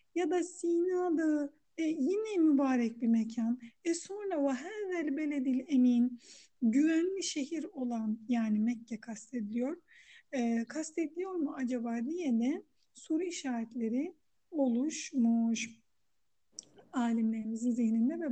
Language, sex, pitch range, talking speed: Turkish, female, 235-315 Hz, 105 wpm